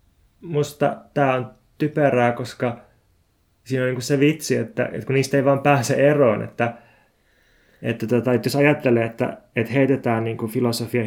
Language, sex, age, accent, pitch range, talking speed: Finnish, male, 20-39, native, 115-130 Hz, 170 wpm